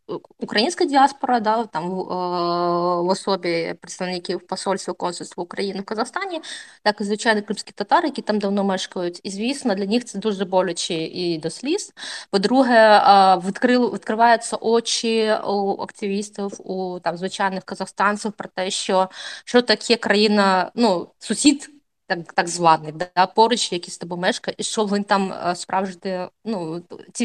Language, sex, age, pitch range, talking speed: Ukrainian, female, 20-39, 180-220 Hz, 135 wpm